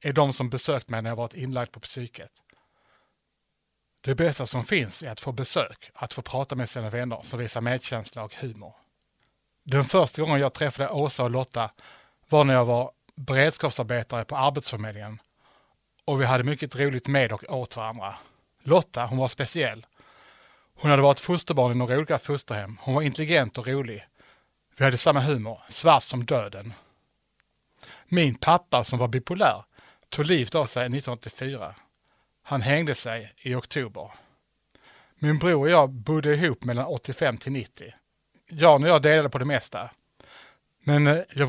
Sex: male